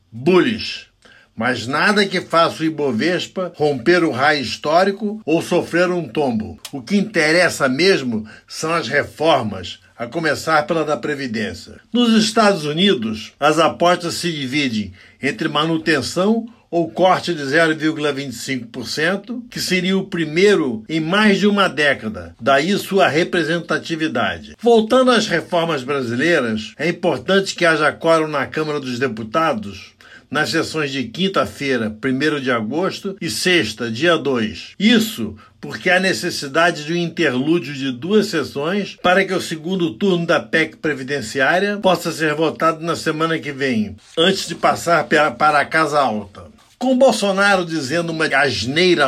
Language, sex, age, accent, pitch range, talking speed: Portuguese, male, 60-79, Brazilian, 140-180 Hz, 140 wpm